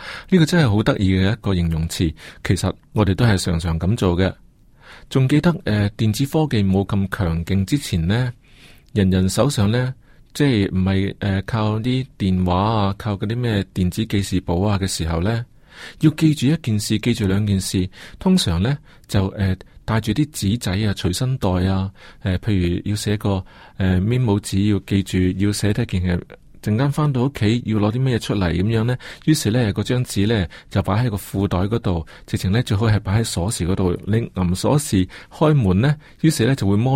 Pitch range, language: 95-120 Hz, Chinese